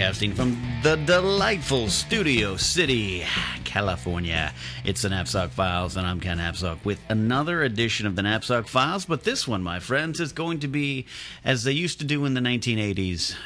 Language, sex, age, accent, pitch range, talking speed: English, male, 40-59, American, 90-130 Hz, 170 wpm